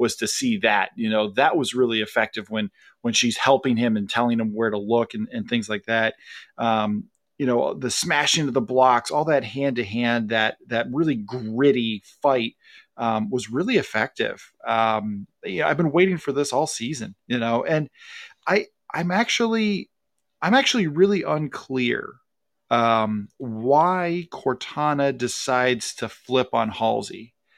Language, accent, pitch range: English, American, 115-150 Hz